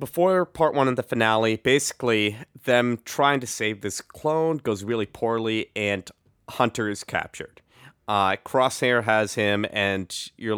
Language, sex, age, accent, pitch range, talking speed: English, male, 30-49, American, 105-125 Hz, 145 wpm